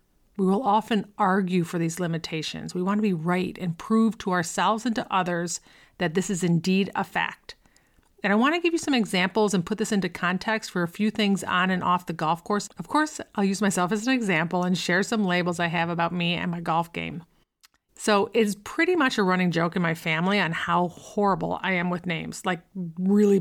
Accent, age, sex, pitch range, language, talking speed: American, 40-59, female, 175-210 Hz, English, 225 wpm